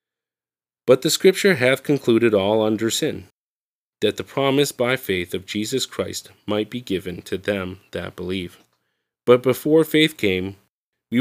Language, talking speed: English, 150 wpm